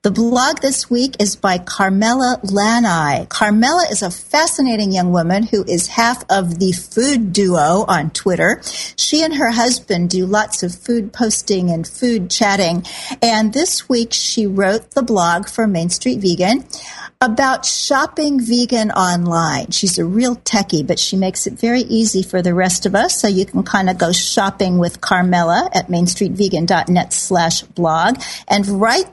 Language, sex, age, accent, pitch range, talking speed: English, female, 50-69, American, 180-235 Hz, 165 wpm